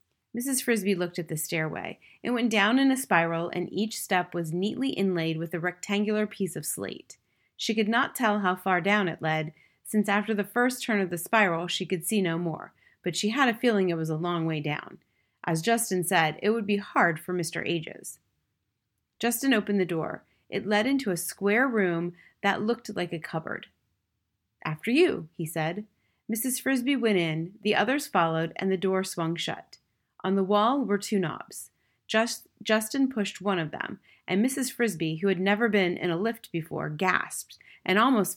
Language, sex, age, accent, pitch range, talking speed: English, female, 30-49, American, 175-230 Hz, 190 wpm